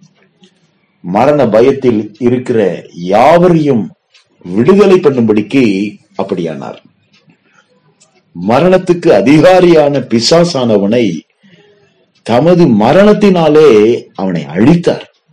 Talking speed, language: 55 wpm, Tamil